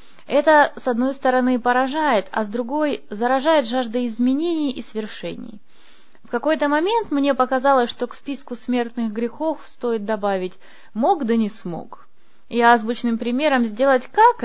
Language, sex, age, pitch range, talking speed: Russian, female, 20-39, 215-280 Hz, 140 wpm